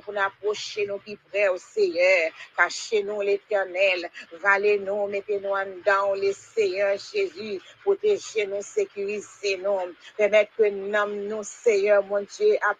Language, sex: English, female